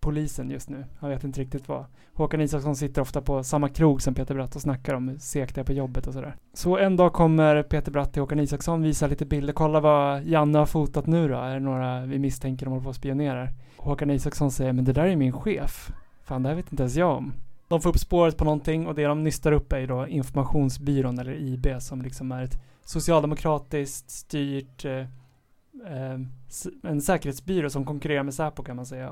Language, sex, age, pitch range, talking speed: Swedish, male, 20-39, 135-155 Hz, 210 wpm